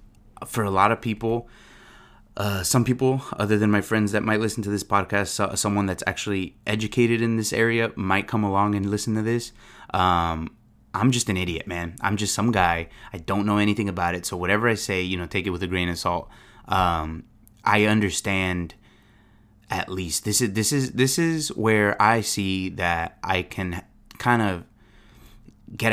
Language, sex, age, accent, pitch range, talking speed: English, male, 20-39, American, 90-110 Hz, 185 wpm